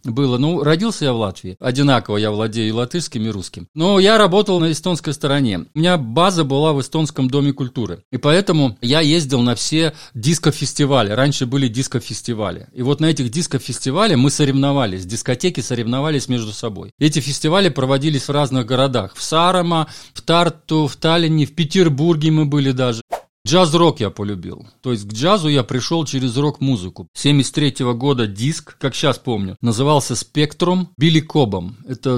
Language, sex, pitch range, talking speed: Russian, male, 120-160 Hz, 160 wpm